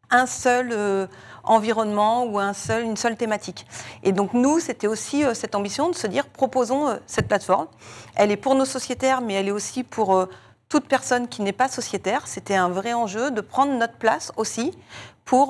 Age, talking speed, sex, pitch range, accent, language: 40-59, 200 wpm, female, 200-245 Hz, French, French